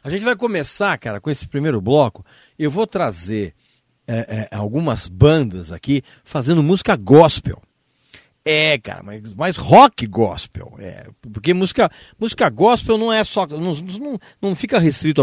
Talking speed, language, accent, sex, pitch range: 155 wpm, Portuguese, Brazilian, male, 125-210 Hz